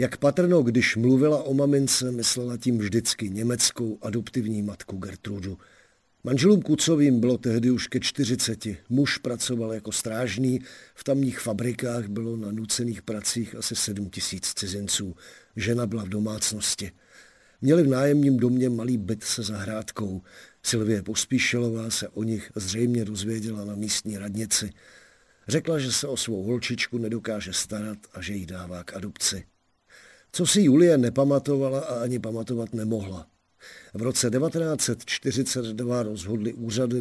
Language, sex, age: Czech, male, 50-69